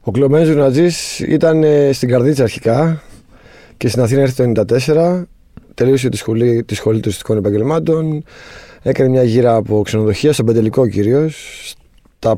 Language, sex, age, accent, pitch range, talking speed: Greek, male, 20-39, Spanish, 115-150 Hz, 140 wpm